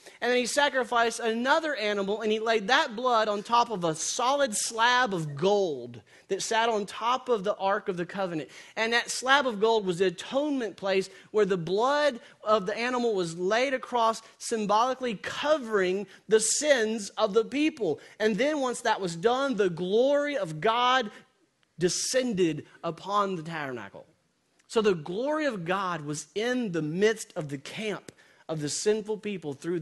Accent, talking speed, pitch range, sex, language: American, 170 wpm, 195-250 Hz, male, English